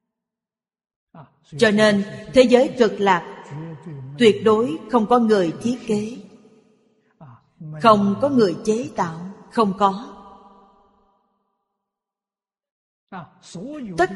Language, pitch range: Vietnamese, 180-220 Hz